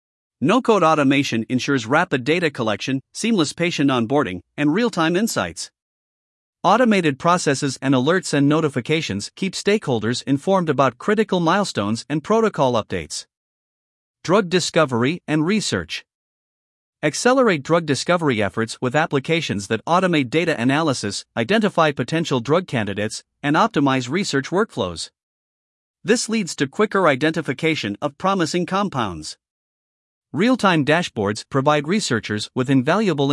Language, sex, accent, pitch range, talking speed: English, male, American, 130-175 Hz, 115 wpm